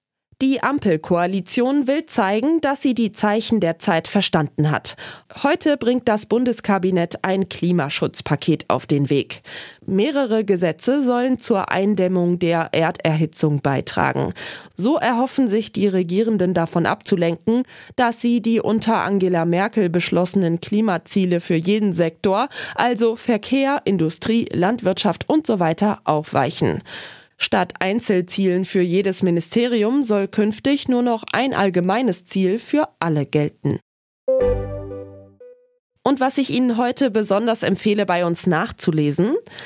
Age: 20-39